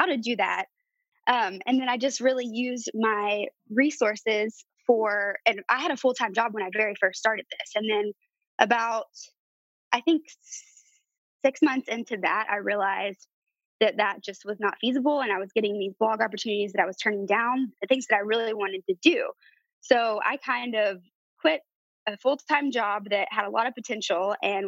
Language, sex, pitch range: English, female, 205-275 Hz